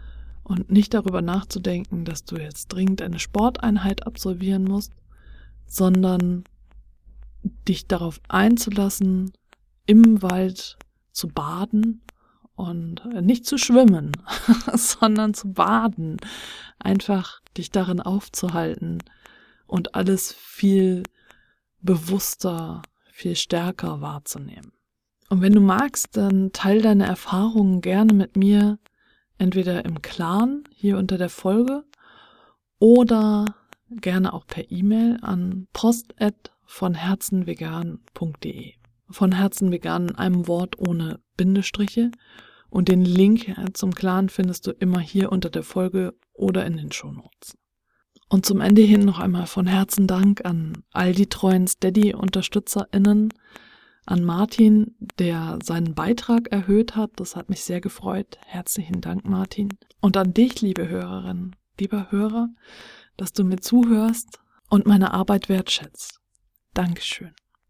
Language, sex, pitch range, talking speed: German, female, 180-210 Hz, 115 wpm